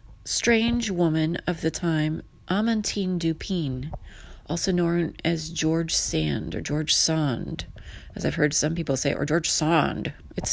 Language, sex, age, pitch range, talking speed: English, female, 30-49, 160-210 Hz, 140 wpm